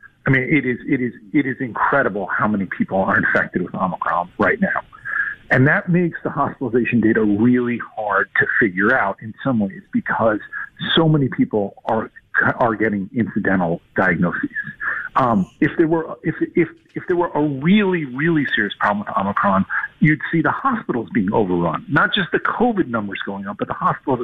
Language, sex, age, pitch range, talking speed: English, male, 50-69, 130-175 Hz, 180 wpm